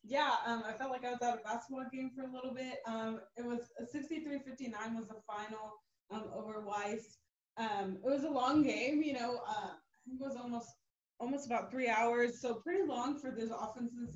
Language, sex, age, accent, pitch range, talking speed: English, female, 20-39, American, 195-240 Hz, 205 wpm